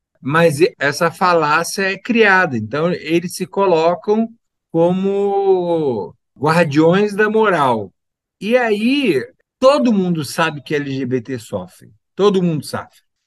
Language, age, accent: Portuguese, 50-69, Brazilian